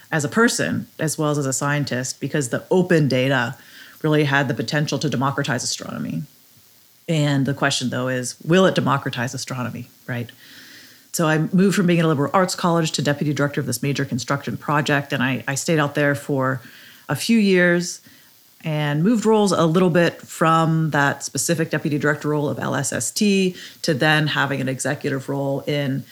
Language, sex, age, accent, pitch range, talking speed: English, female, 30-49, American, 135-175 Hz, 180 wpm